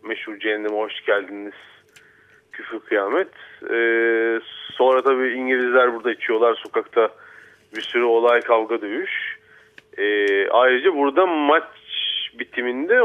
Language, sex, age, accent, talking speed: Turkish, male, 30-49, native, 105 wpm